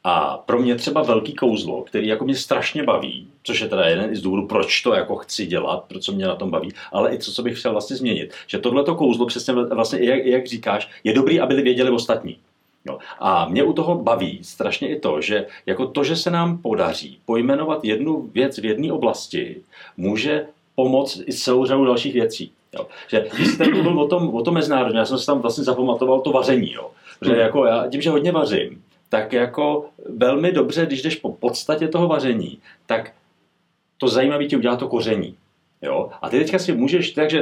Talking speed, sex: 205 wpm, male